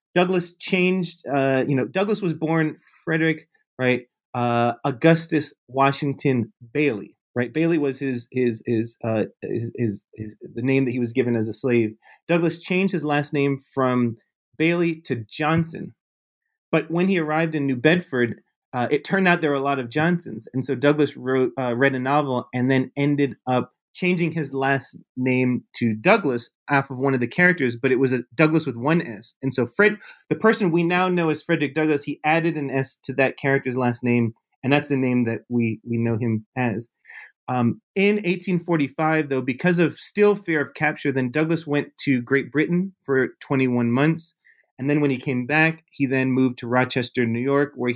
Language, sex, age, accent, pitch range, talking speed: English, male, 30-49, American, 125-160 Hz, 195 wpm